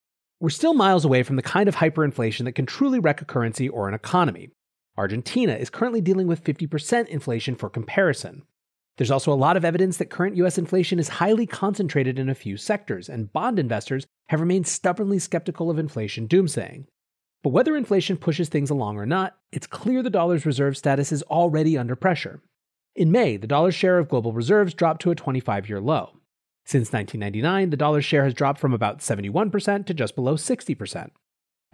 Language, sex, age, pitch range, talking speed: English, male, 30-49, 125-185 Hz, 185 wpm